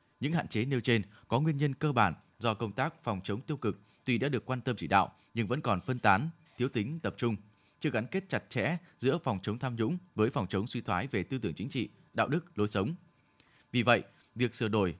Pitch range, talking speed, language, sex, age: 105-145 Hz, 250 wpm, Vietnamese, male, 20-39